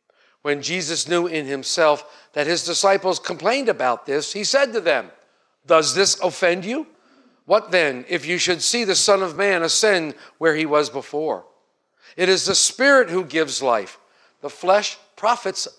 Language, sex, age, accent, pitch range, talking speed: English, male, 50-69, American, 150-210 Hz, 165 wpm